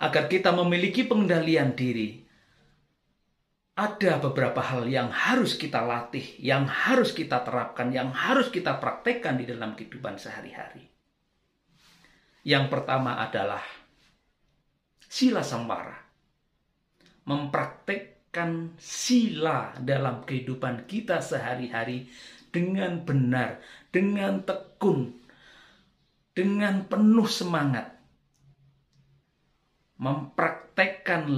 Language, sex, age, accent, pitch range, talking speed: Indonesian, male, 50-69, native, 125-185 Hz, 80 wpm